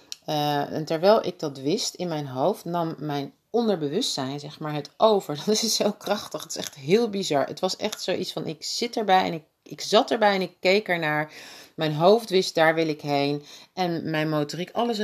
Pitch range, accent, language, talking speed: 145-190 Hz, Dutch, Dutch, 205 wpm